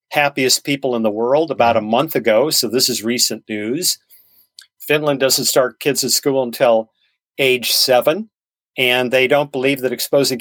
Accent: American